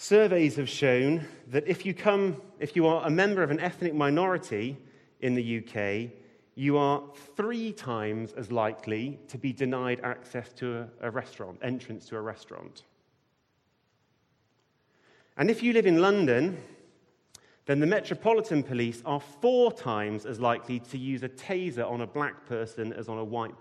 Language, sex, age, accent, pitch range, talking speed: English, male, 30-49, British, 115-155 Hz, 155 wpm